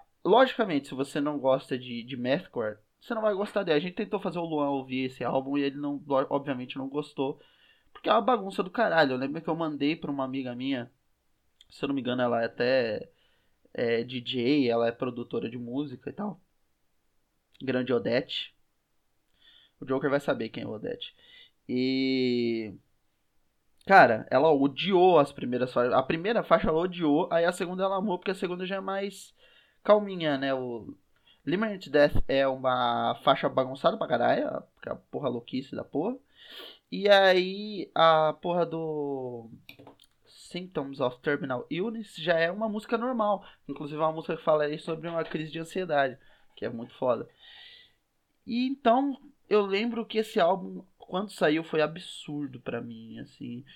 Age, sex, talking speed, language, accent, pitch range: 20-39, male, 170 wpm, Portuguese, Brazilian, 130-185 Hz